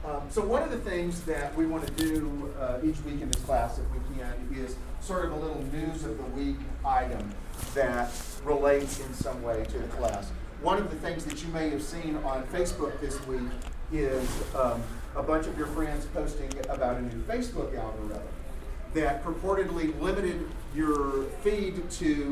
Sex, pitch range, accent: male, 135-185 Hz, American